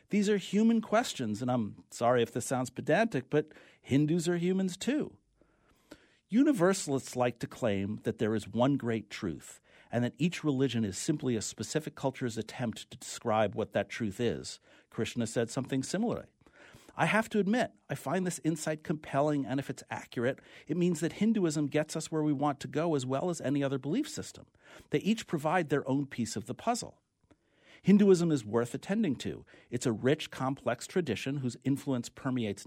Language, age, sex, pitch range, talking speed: English, 50-69, male, 110-165 Hz, 180 wpm